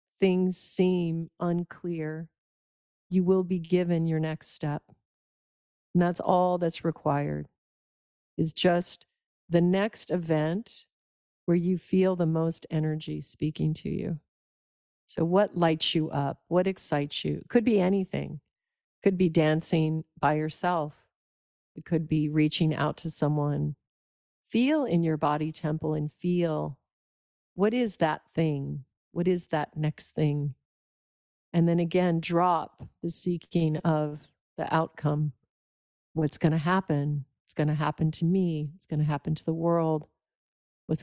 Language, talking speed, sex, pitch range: English, 140 wpm, female, 150-175 Hz